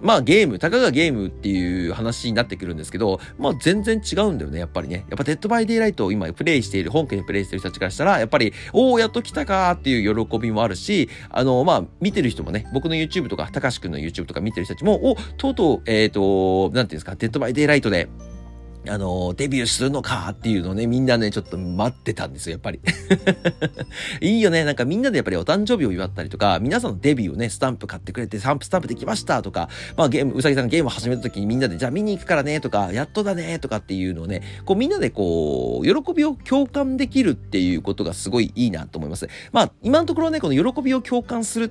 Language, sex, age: Japanese, male, 40-59